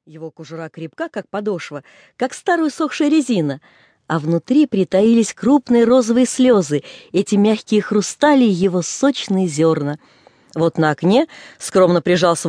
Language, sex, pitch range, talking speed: English, female, 165-250 Hz, 130 wpm